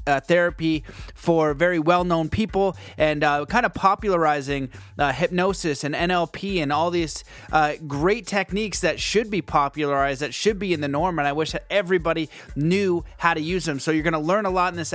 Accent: American